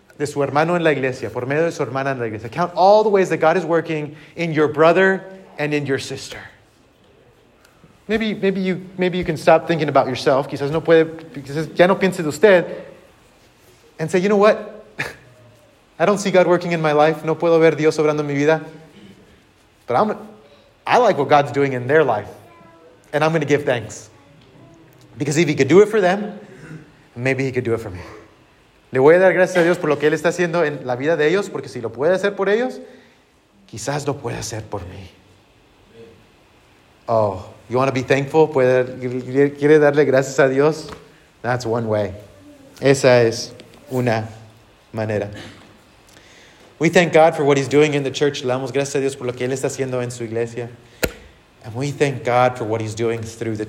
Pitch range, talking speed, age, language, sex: 115-160 Hz, 205 wpm, 30-49, English, male